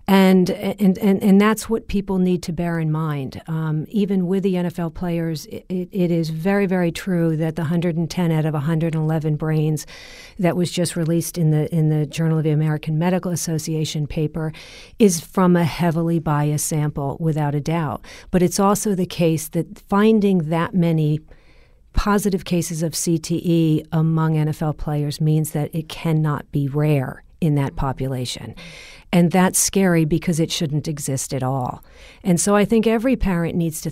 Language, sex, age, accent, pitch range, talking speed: English, female, 50-69, American, 155-180 Hz, 170 wpm